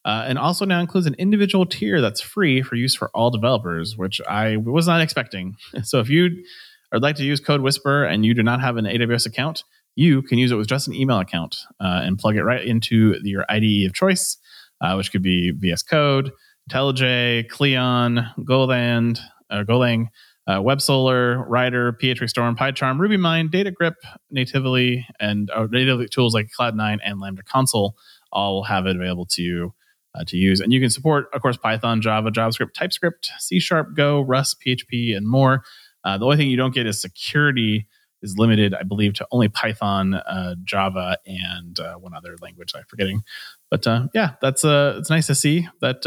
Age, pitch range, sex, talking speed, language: 30-49, 105-140 Hz, male, 190 wpm, English